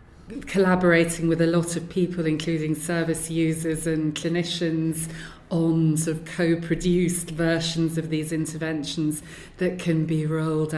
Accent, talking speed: British, 130 wpm